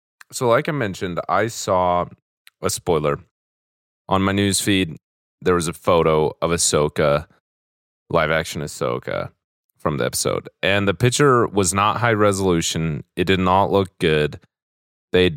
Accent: American